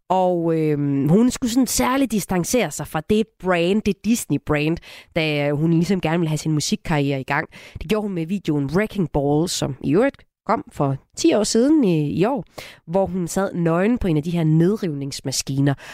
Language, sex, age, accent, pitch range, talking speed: Danish, female, 30-49, native, 150-200 Hz, 190 wpm